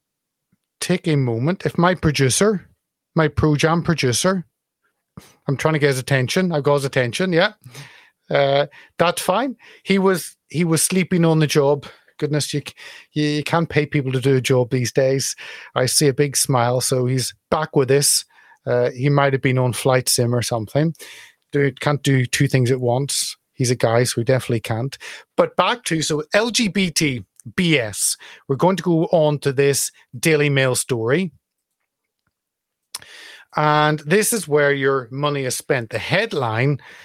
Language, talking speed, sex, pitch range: English, 170 wpm, male, 130-155 Hz